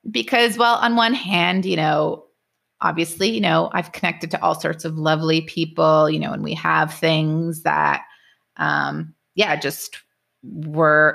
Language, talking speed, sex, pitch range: English, 155 wpm, female, 155-180 Hz